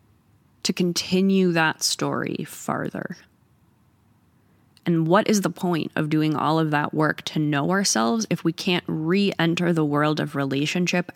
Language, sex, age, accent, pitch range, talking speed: English, female, 20-39, American, 140-180 Hz, 150 wpm